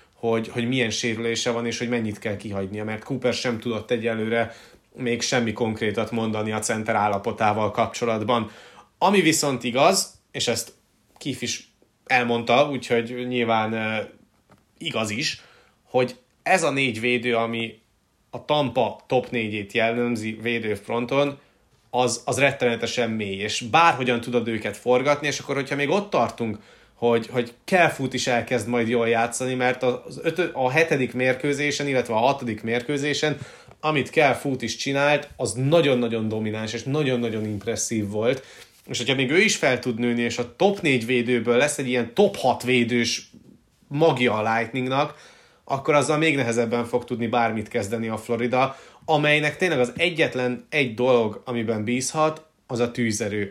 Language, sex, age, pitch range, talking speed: Hungarian, male, 30-49, 115-140 Hz, 155 wpm